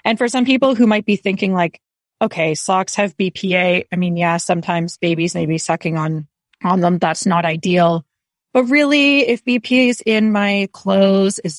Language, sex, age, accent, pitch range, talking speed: English, female, 30-49, American, 170-200 Hz, 185 wpm